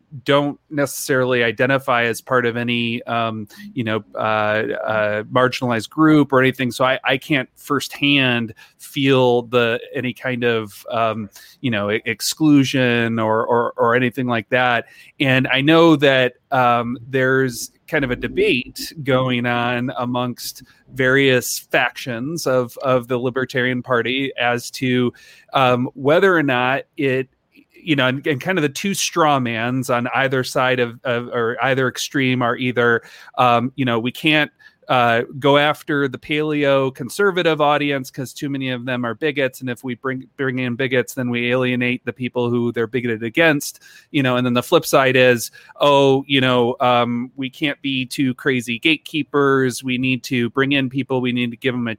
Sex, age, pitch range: male, 30-49, 120-140 Hz